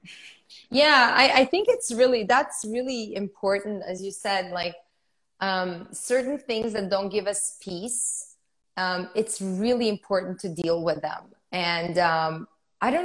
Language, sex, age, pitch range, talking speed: English, female, 20-39, 190-255 Hz, 150 wpm